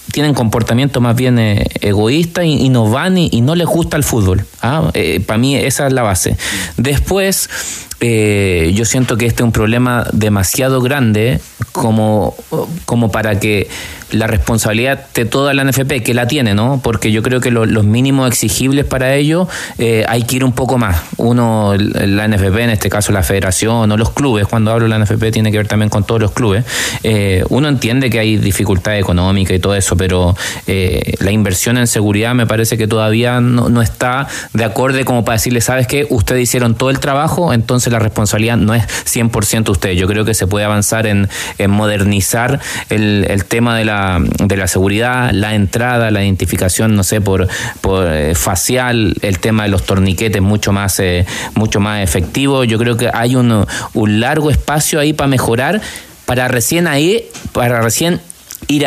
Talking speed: 190 wpm